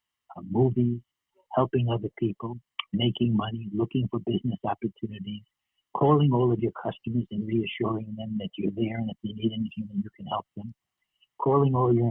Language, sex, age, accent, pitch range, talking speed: English, male, 60-79, American, 110-145 Hz, 170 wpm